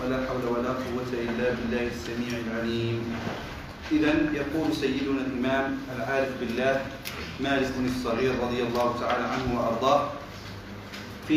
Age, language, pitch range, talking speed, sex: 40-59, Arabic, 130-155 Hz, 120 wpm, male